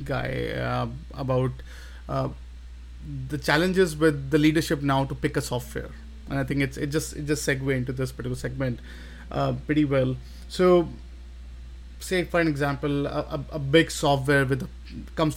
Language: English